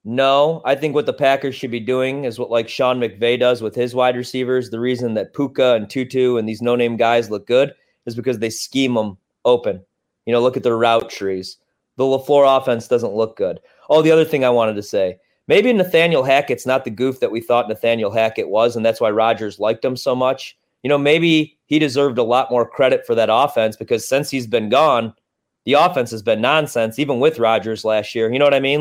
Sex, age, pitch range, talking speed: male, 30-49, 120-160 Hz, 230 wpm